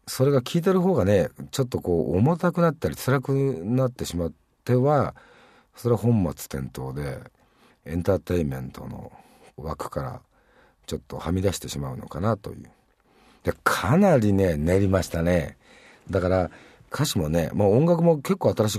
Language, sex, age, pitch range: Japanese, male, 50-69, 75-125 Hz